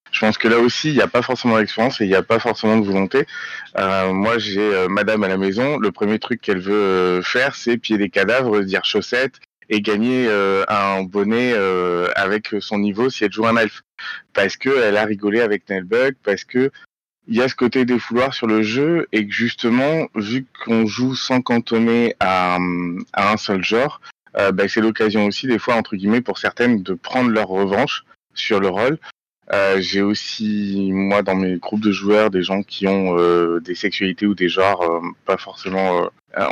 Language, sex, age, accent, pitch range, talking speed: French, male, 30-49, French, 95-115 Hz, 205 wpm